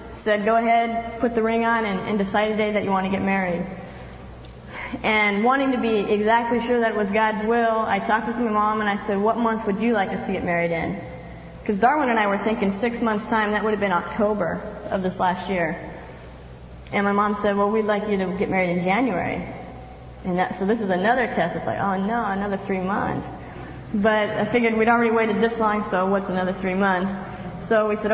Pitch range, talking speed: 195-230 Hz, 230 wpm